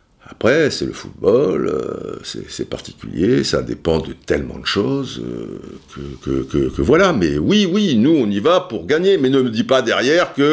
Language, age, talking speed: French, 50-69, 180 wpm